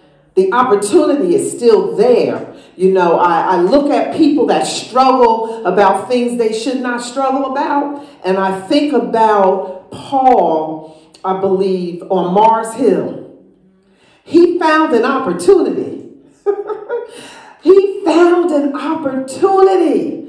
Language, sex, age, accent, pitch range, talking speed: English, female, 40-59, American, 215-315 Hz, 115 wpm